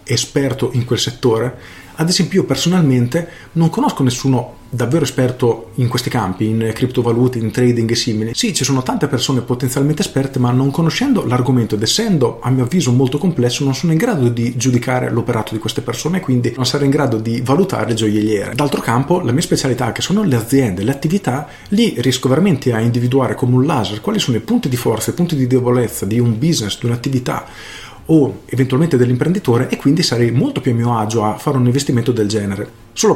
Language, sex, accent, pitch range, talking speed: Italian, male, native, 115-145 Hz, 200 wpm